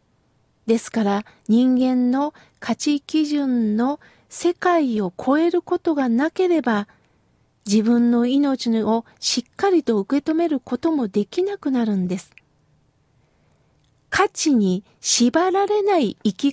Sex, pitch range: female, 230-315 Hz